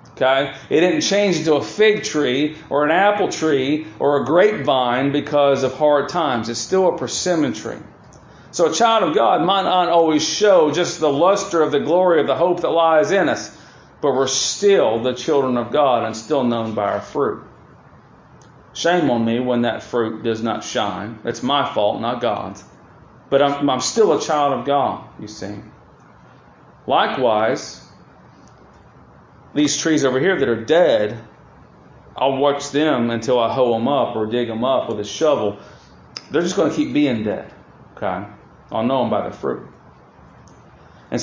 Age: 40-59